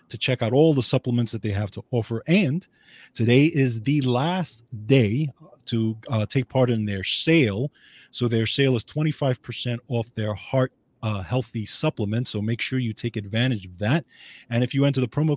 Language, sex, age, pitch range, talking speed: English, male, 30-49, 110-140 Hz, 190 wpm